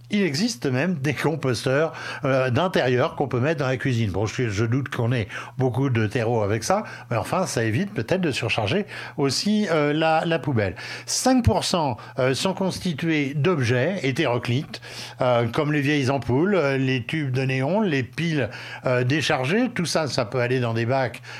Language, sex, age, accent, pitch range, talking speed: French, male, 60-79, French, 120-150 Hz, 160 wpm